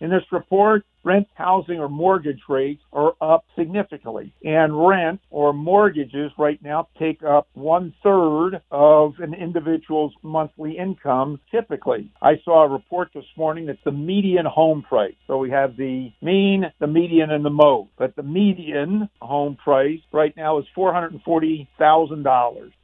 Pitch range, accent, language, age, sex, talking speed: 145-175 Hz, American, English, 60-79, male, 145 wpm